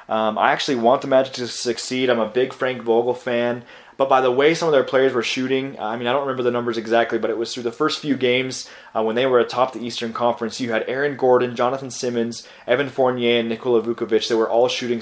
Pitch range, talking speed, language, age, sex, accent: 115-135 Hz, 250 wpm, English, 20-39, male, American